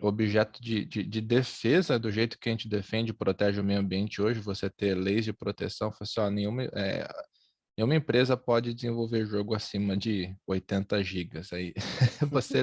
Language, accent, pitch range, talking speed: Portuguese, Brazilian, 100-125 Hz, 170 wpm